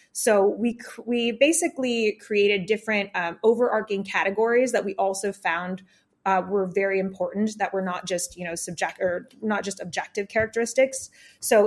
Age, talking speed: 20-39, 155 wpm